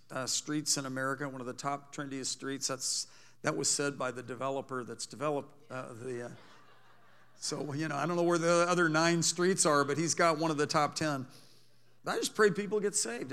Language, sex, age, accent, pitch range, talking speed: English, male, 50-69, American, 135-160 Hz, 220 wpm